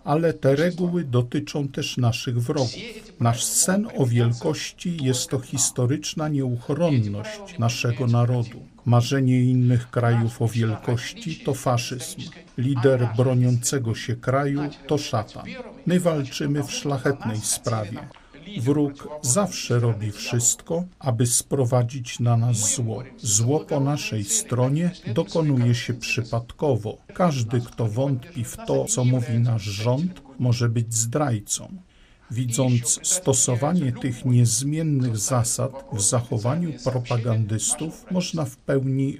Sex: male